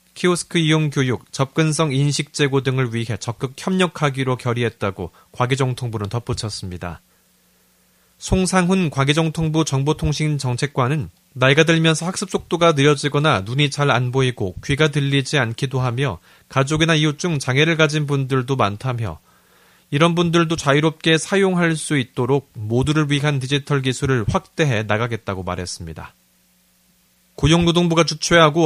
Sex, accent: male, native